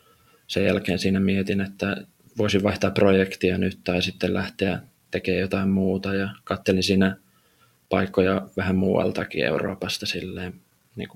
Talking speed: 130 wpm